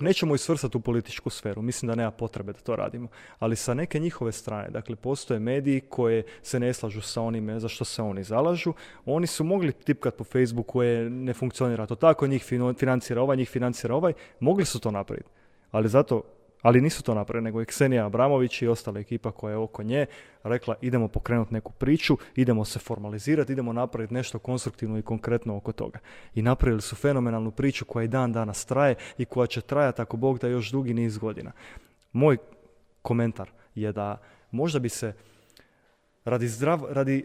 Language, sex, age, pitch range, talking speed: Croatian, male, 30-49, 110-135 Hz, 185 wpm